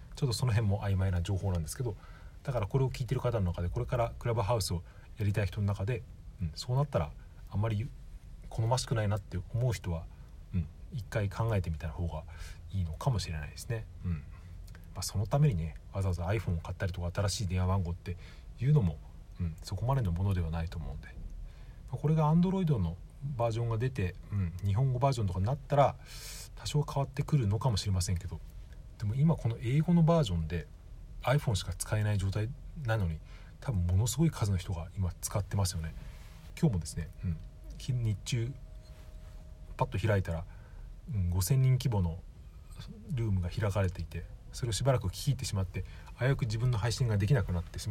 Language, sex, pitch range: Japanese, male, 85-120 Hz